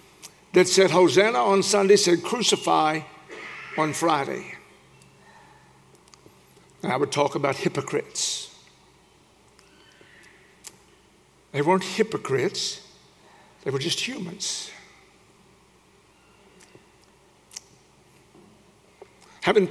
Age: 60-79